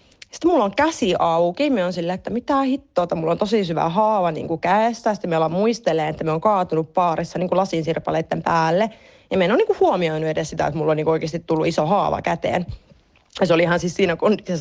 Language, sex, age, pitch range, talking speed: Finnish, female, 30-49, 165-225 Hz, 215 wpm